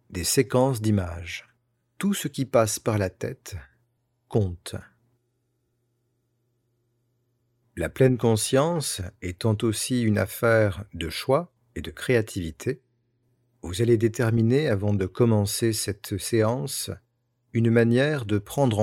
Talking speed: 110 wpm